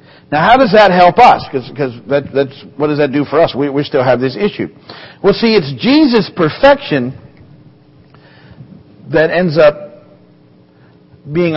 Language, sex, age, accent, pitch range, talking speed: English, male, 50-69, American, 120-155 Hz, 150 wpm